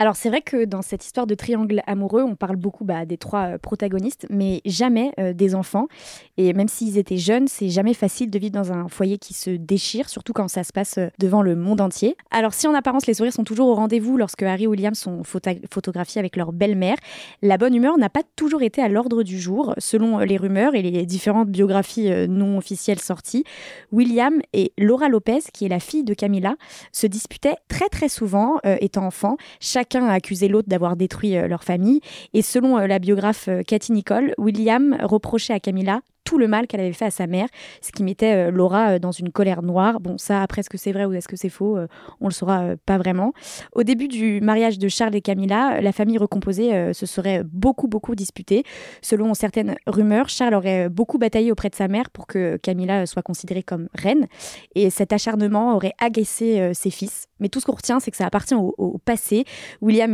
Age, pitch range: 20-39, 195-235 Hz